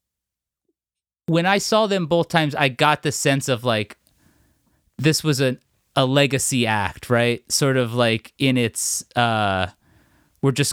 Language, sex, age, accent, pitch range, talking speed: English, male, 30-49, American, 115-150 Hz, 150 wpm